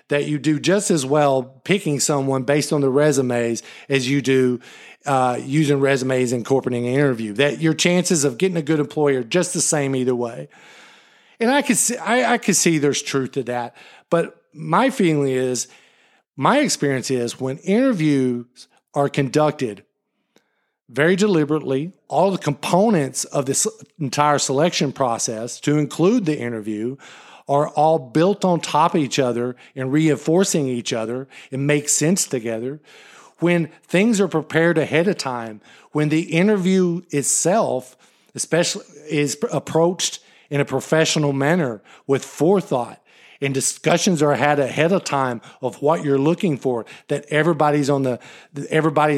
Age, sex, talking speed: 50-69, male, 155 wpm